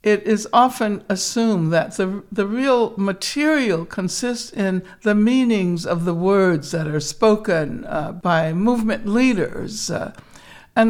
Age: 60-79